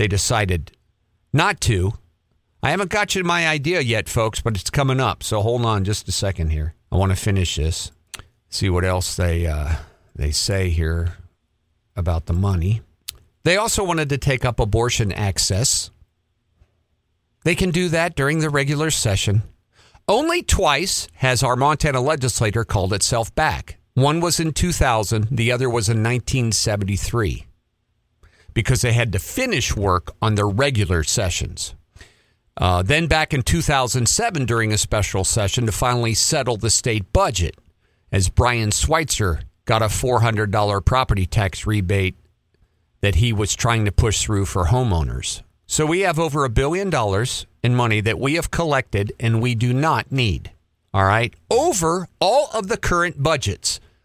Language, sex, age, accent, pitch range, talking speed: English, male, 50-69, American, 95-130 Hz, 160 wpm